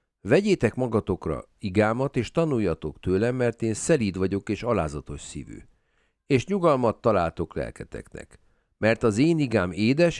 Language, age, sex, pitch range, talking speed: Hungarian, 50-69, male, 95-130 Hz, 130 wpm